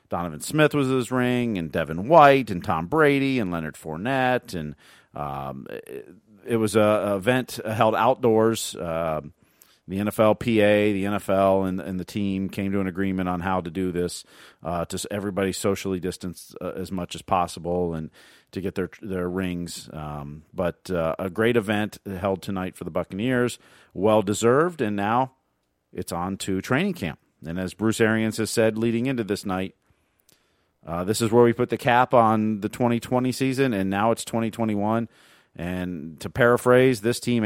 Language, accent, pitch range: English, American, 90-115 Hz